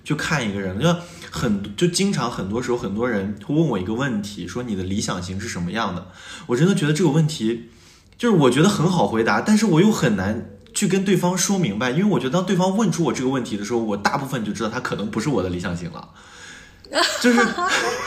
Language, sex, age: Chinese, male, 20-39